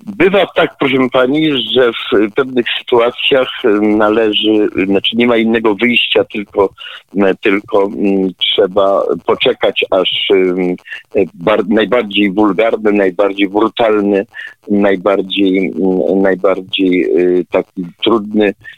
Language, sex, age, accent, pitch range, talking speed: Polish, male, 50-69, native, 105-145 Hz, 85 wpm